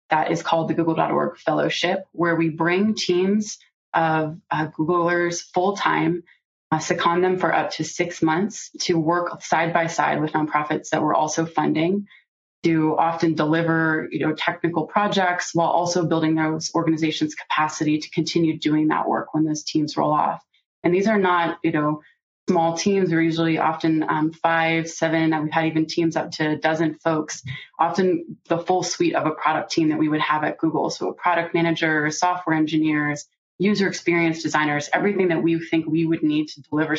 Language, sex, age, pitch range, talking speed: English, female, 20-39, 155-170 Hz, 185 wpm